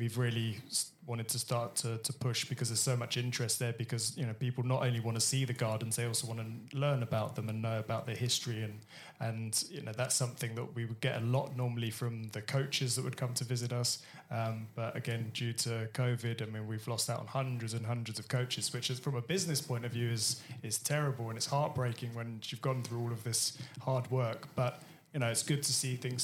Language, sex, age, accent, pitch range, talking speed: English, male, 20-39, British, 115-135 Hz, 245 wpm